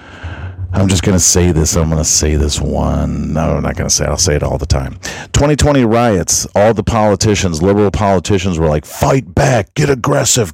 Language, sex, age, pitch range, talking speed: English, male, 40-59, 75-100 Hz, 215 wpm